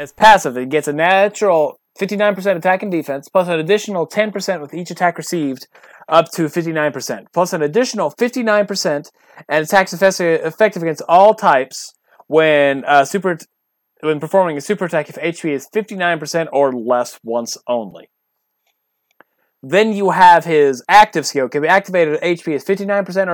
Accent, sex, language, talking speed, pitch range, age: American, male, English, 155 wpm, 140-190 Hz, 30-49